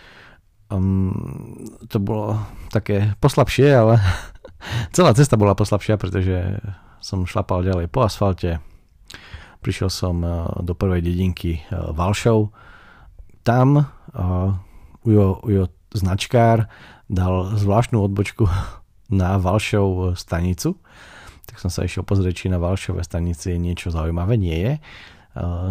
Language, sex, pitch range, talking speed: Slovak, male, 90-105 Hz, 110 wpm